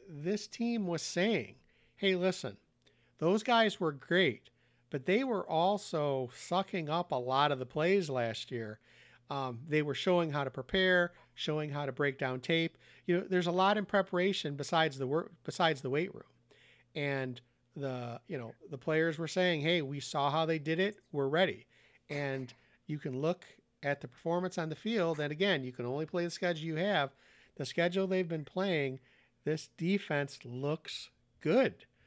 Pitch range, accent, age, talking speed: 135-170 Hz, American, 50-69, 180 wpm